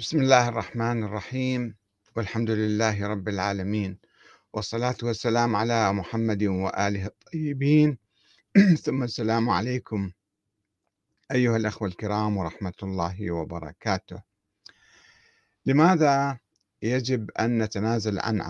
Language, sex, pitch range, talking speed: Arabic, male, 105-130 Hz, 90 wpm